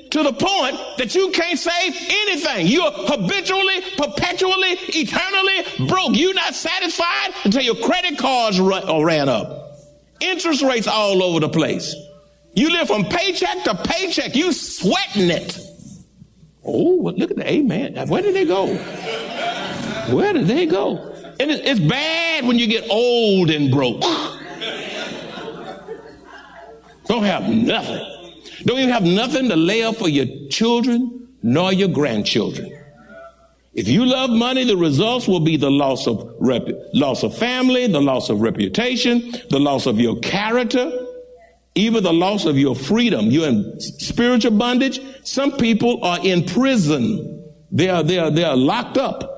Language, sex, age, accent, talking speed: English, male, 50-69, American, 150 wpm